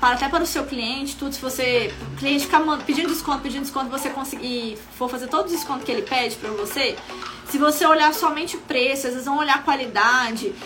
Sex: female